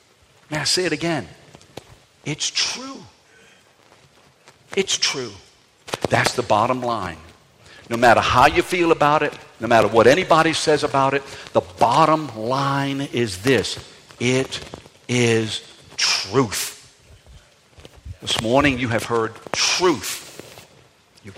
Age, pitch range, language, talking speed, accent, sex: 60-79, 110-150 Hz, English, 120 wpm, American, male